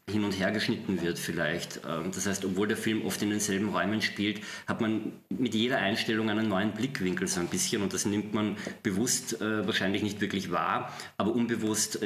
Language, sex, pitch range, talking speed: German, male, 105-120 Hz, 190 wpm